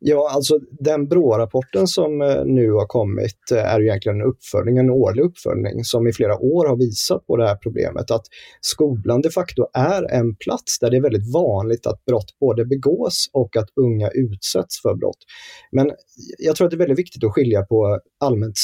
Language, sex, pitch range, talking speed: Swedish, male, 105-140 Hz, 195 wpm